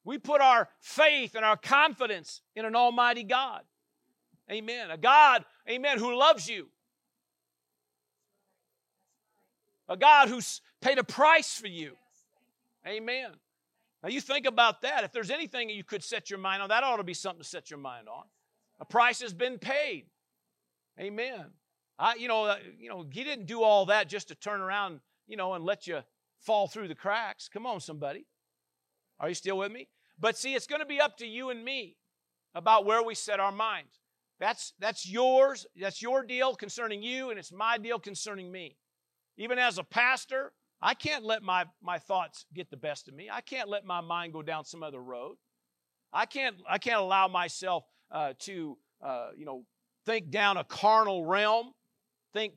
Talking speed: 185 wpm